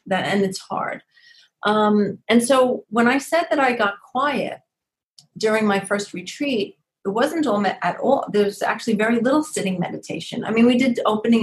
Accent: American